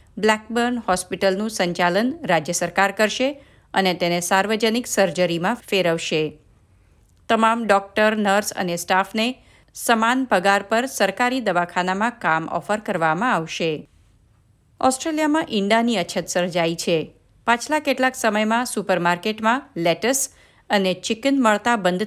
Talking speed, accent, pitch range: 105 wpm, native, 180-245 Hz